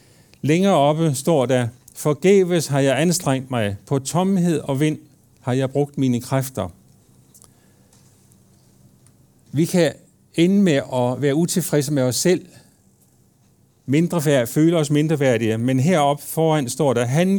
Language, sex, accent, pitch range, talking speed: Danish, male, native, 125-160 Hz, 140 wpm